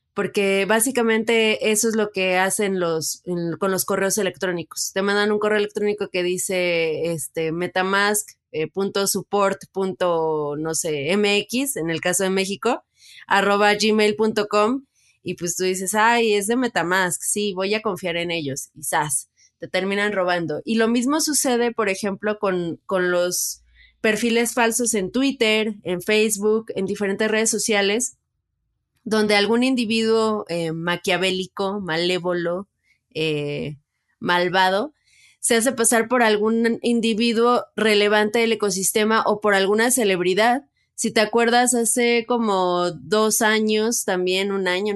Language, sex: Spanish, female